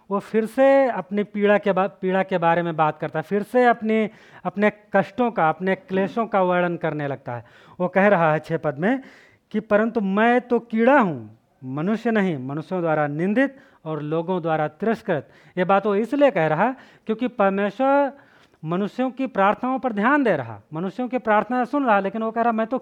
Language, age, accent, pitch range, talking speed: Hindi, 40-59, native, 185-250 Hz, 195 wpm